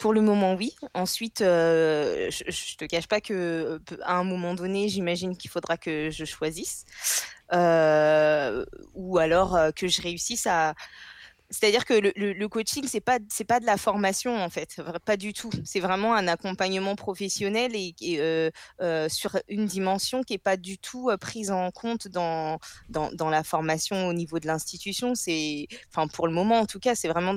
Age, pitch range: 20-39, 165-205 Hz